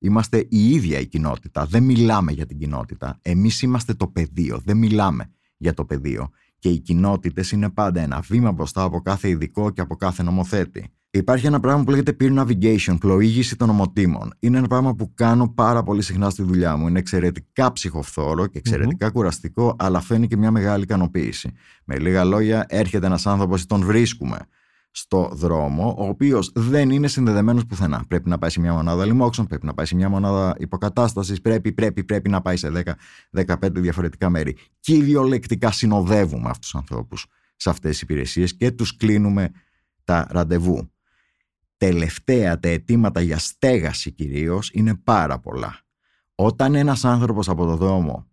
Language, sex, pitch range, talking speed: Greek, male, 85-110 Hz, 170 wpm